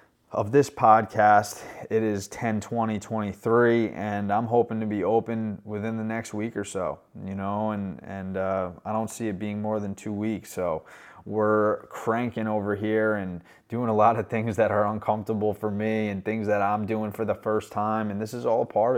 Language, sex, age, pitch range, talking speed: English, male, 20-39, 100-110 Hz, 200 wpm